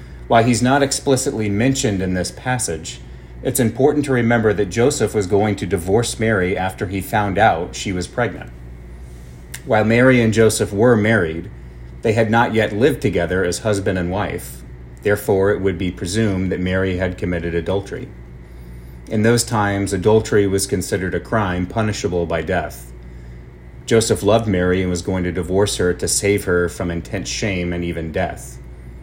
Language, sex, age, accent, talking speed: English, male, 30-49, American, 165 wpm